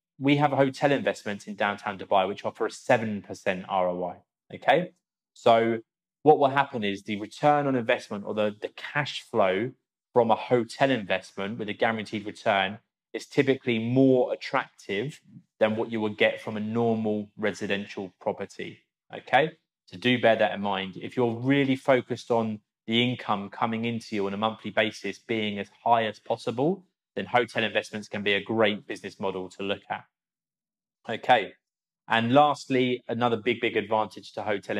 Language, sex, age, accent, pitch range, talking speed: English, male, 20-39, British, 105-125 Hz, 165 wpm